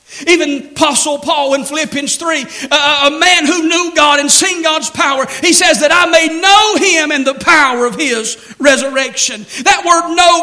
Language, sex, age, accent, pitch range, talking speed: English, male, 50-69, American, 220-290 Hz, 180 wpm